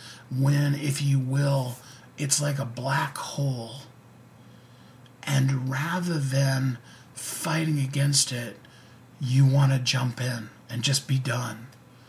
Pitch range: 125-145 Hz